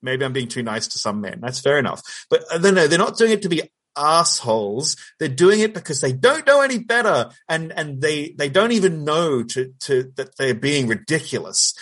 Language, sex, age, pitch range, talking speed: English, male, 30-49, 125-170 Hz, 225 wpm